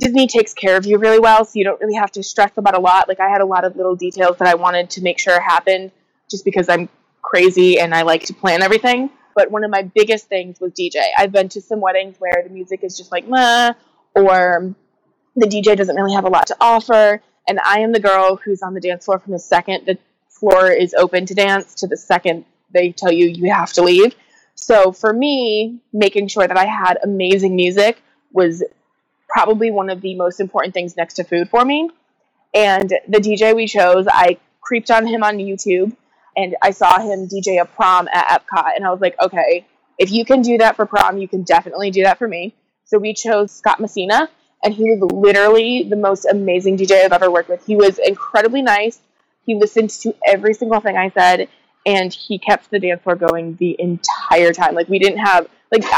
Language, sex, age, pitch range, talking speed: English, female, 20-39, 180-220 Hz, 220 wpm